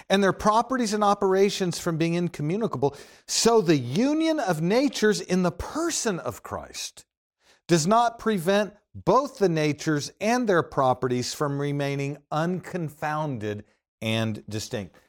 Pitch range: 125-190 Hz